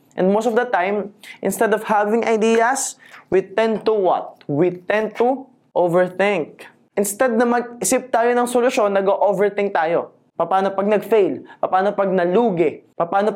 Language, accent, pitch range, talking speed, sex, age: Filipino, native, 165-225 Hz, 145 wpm, male, 20-39